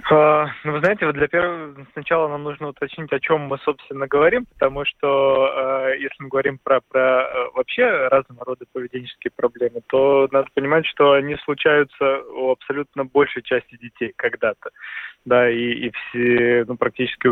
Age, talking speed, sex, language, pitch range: 20-39, 160 wpm, male, Russian, 125-145 Hz